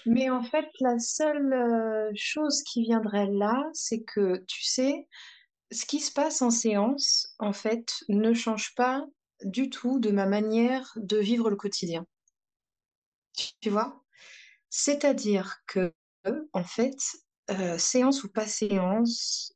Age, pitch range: 30-49, 190-250 Hz